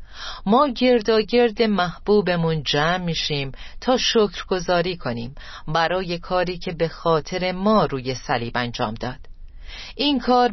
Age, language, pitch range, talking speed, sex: 40-59, Persian, 135-205 Hz, 125 wpm, female